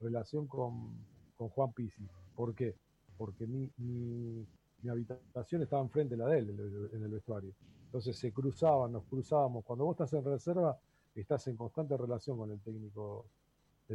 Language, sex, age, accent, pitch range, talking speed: Spanish, male, 50-69, Argentinian, 110-145 Hz, 170 wpm